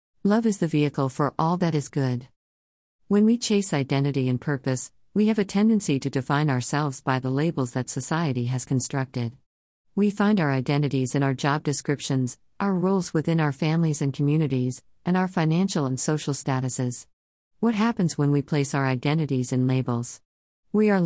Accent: American